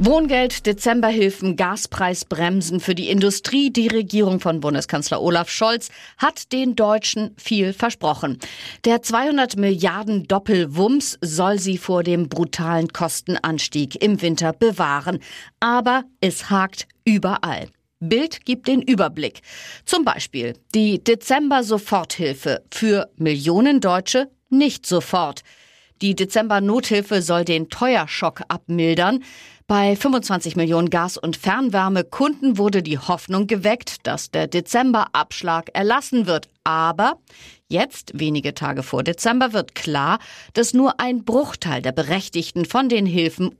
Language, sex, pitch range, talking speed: German, female, 170-230 Hz, 115 wpm